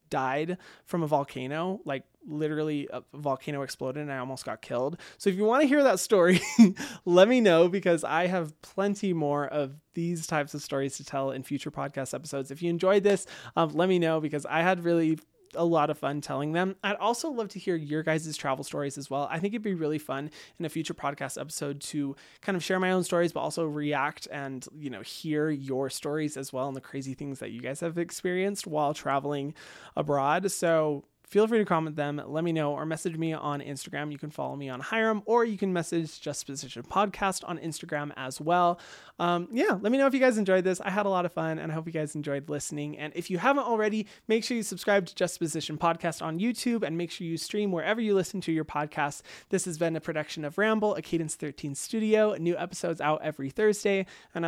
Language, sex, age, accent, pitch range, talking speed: English, male, 20-39, American, 145-185 Hz, 230 wpm